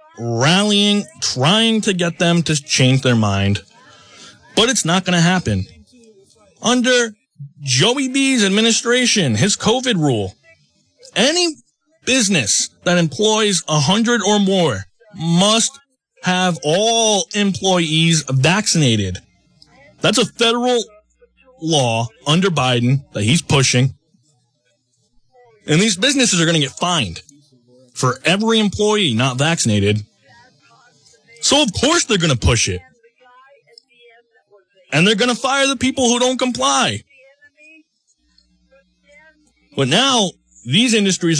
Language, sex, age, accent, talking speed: English, male, 20-39, American, 115 wpm